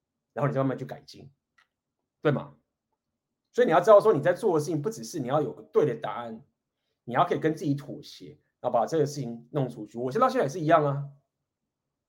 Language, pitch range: Chinese, 135-185 Hz